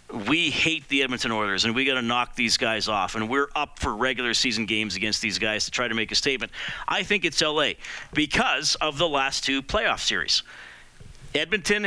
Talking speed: 205 wpm